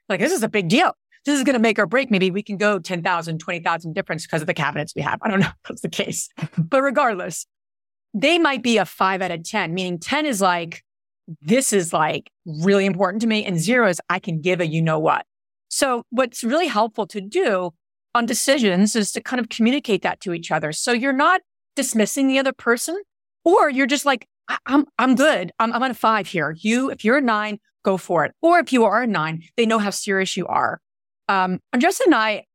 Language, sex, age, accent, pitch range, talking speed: English, female, 30-49, American, 175-245 Hz, 230 wpm